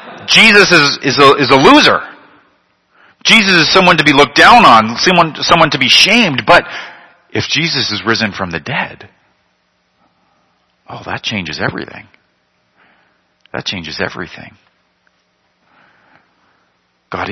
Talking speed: 125 wpm